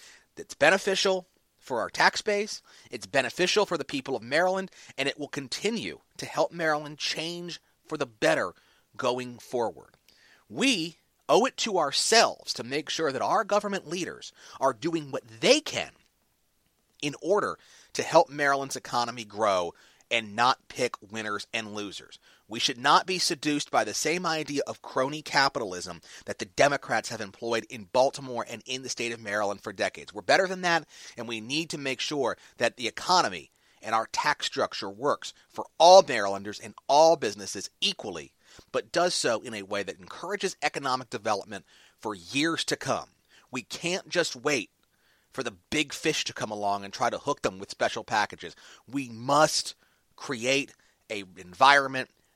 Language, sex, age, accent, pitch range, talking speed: English, male, 30-49, American, 115-165 Hz, 165 wpm